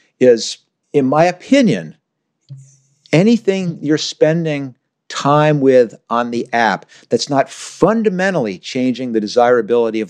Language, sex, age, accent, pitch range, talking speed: English, male, 60-79, American, 130-170 Hz, 115 wpm